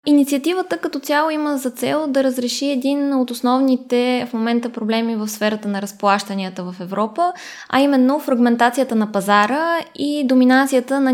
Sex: female